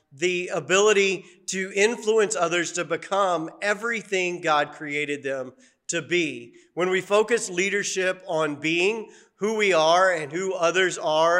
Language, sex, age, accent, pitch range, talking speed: English, male, 40-59, American, 155-190 Hz, 135 wpm